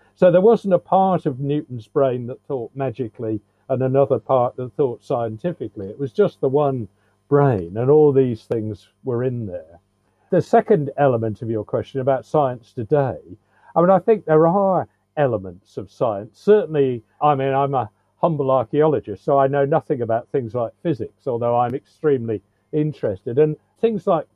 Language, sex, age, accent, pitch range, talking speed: English, male, 50-69, British, 115-145 Hz, 170 wpm